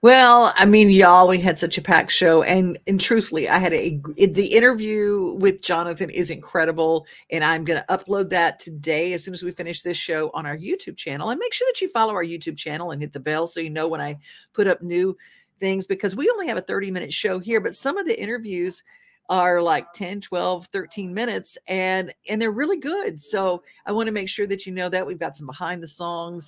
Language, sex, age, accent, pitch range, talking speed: English, female, 50-69, American, 170-210 Hz, 230 wpm